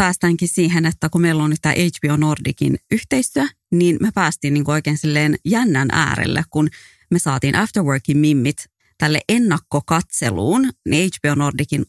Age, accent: 30-49, Finnish